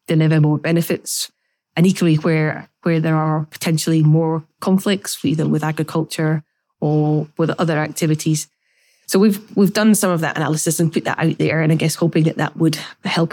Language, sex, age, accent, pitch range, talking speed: English, female, 20-39, Irish, 155-175 Hz, 180 wpm